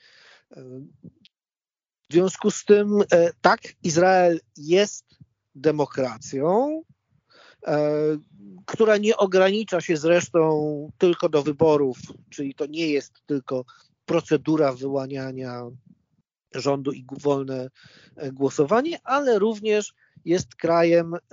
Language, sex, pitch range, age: Polish, male, 145-205 Hz, 40-59